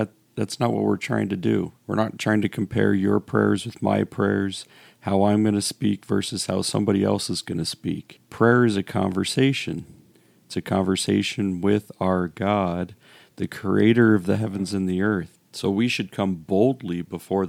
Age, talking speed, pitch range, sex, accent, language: 40-59, 185 wpm, 90-105 Hz, male, American, English